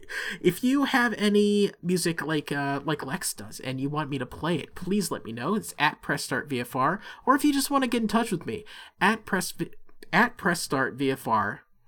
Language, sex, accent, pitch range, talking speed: English, male, American, 140-195 Hz, 200 wpm